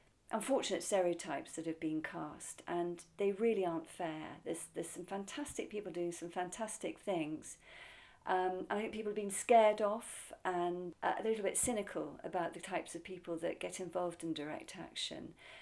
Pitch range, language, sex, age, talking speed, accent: 175-215 Hz, English, female, 50-69, 170 wpm, British